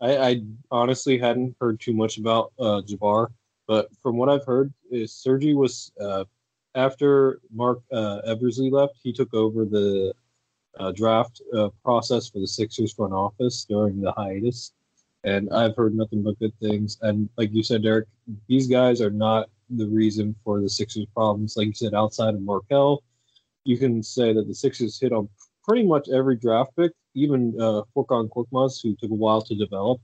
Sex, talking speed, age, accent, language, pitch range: male, 185 wpm, 20-39, American, English, 105-120 Hz